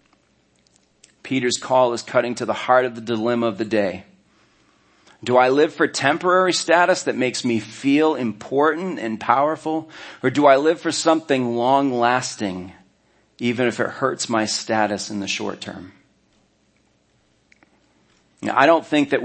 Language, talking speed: English, 150 wpm